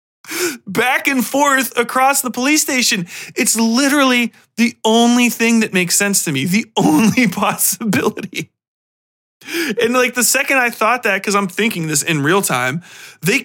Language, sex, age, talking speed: English, male, 30-49, 155 wpm